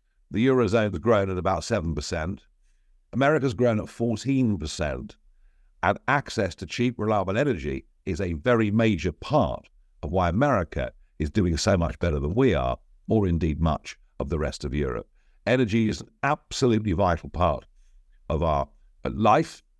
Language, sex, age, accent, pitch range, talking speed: English, male, 50-69, British, 85-125 Hz, 150 wpm